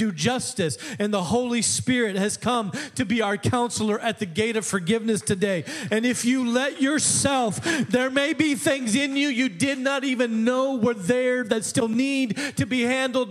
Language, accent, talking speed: English, American, 185 wpm